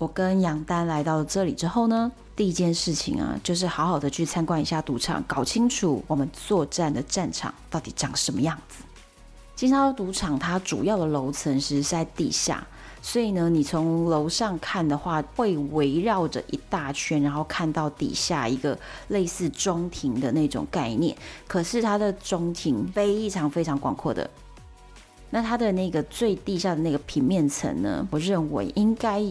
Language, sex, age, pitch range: Chinese, female, 30-49, 150-185 Hz